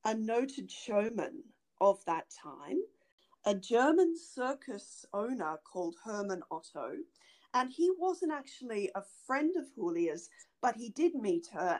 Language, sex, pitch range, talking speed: English, female, 200-295 Hz, 130 wpm